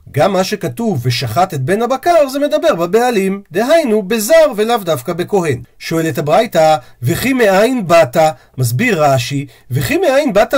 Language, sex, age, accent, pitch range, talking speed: Hebrew, male, 40-59, native, 140-215 Hz, 140 wpm